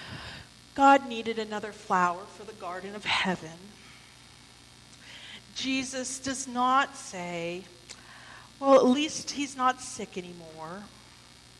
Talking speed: 105 wpm